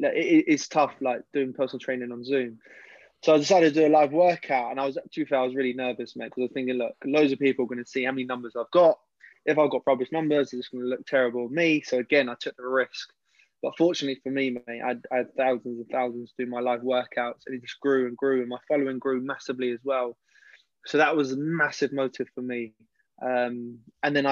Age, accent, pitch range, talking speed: 20-39, British, 125-140 Hz, 245 wpm